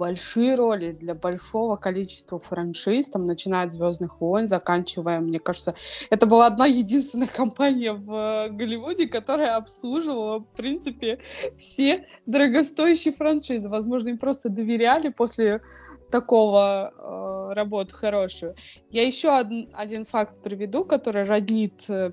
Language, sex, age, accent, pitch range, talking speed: Russian, female, 20-39, native, 195-245 Hz, 120 wpm